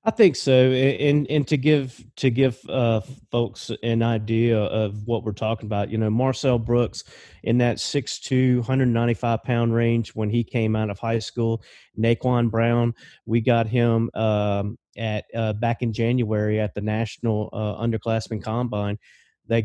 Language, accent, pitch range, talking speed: English, American, 110-125 Hz, 175 wpm